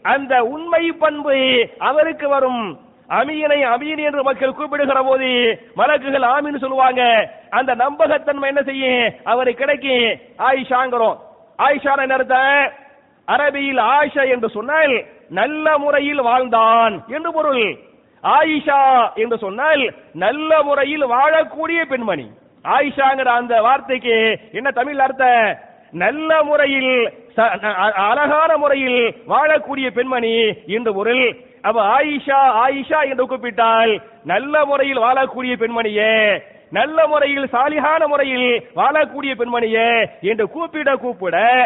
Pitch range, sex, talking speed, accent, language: 235-295 Hz, male, 100 wpm, Indian, English